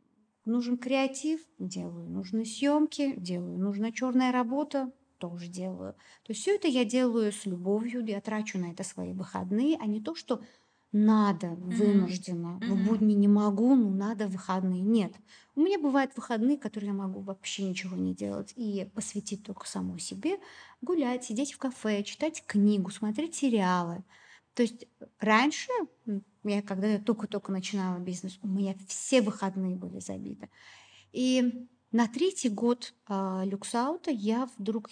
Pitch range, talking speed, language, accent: 195-250 Hz, 150 wpm, Russian, native